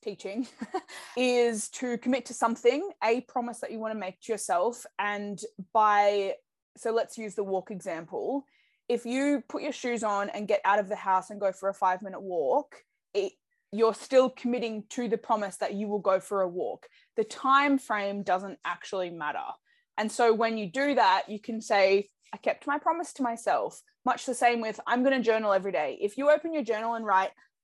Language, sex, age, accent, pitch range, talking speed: English, female, 20-39, Australian, 200-250 Hz, 200 wpm